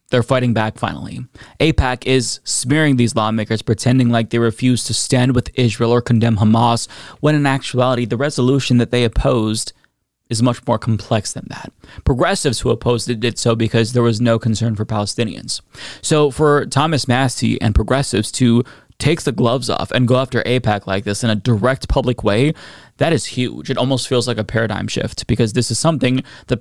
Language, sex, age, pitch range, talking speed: English, male, 20-39, 115-135 Hz, 190 wpm